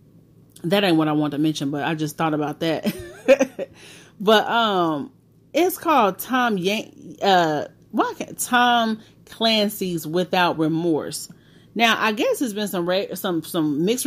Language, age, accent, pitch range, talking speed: English, 30-49, American, 155-210 Hz, 135 wpm